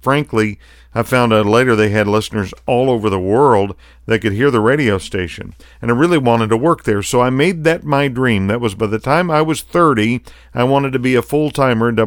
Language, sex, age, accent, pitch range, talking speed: English, male, 50-69, American, 105-130 Hz, 235 wpm